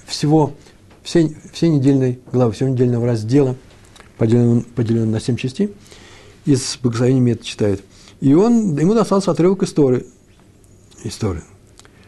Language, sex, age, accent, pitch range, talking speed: Russian, male, 60-79, native, 105-145 Hz, 115 wpm